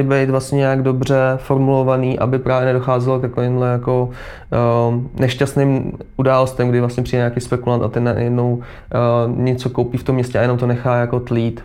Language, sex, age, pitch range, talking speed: Czech, male, 20-39, 120-130 Hz, 165 wpm